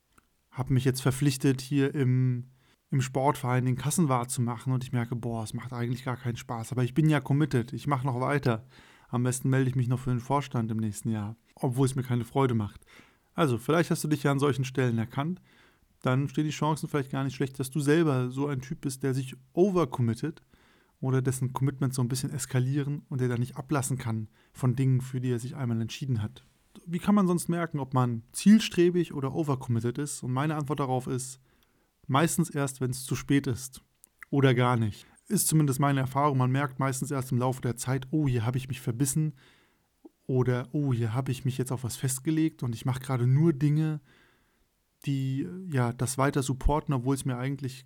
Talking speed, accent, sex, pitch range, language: 210 wpm, German, male, 125-145 Hz, German